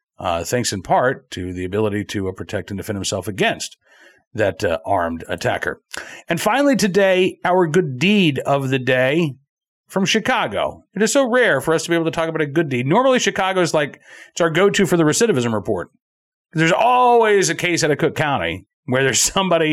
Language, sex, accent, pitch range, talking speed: English, male, American, 135-205 Hz, 200 wpm